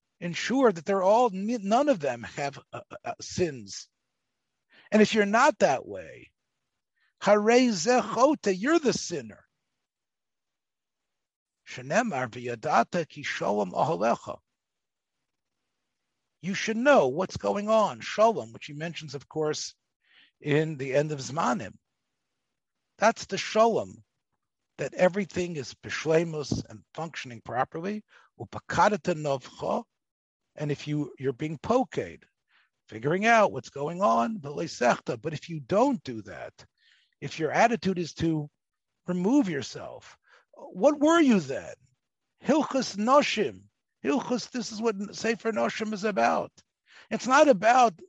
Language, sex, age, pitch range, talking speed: English, male, 60-79, 150-225 Hz, 105 wpm